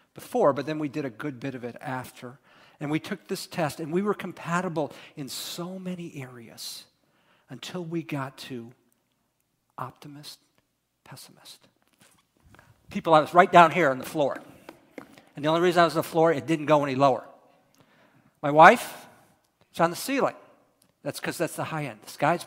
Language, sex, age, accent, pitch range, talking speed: English, male, 50-69, American, 140-175 Hz, 180 wpm